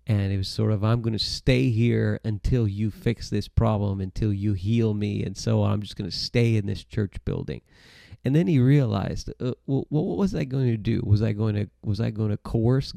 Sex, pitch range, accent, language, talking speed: male, 105-125 Hz, American, English, 230 wpm